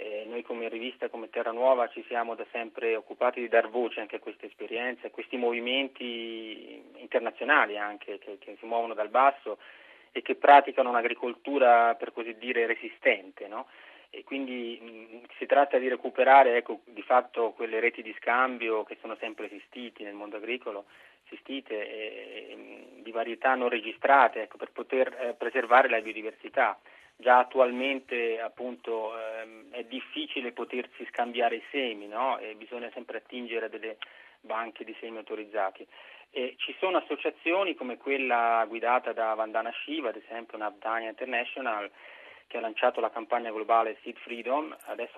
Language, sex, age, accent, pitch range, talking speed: Italian, male, 30-49, native, 115-125 Hz, 155 wpm